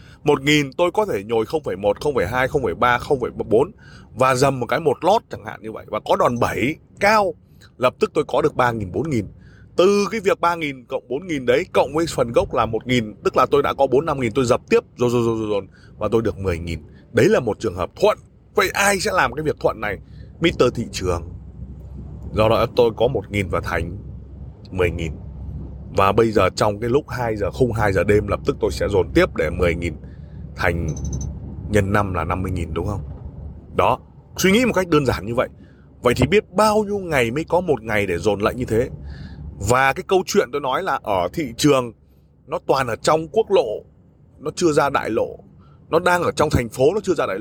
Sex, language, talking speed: male, Vietnamese, 215 wpm